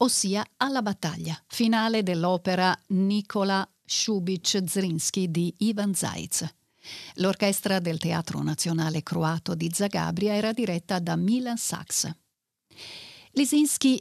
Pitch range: 175-240 Hz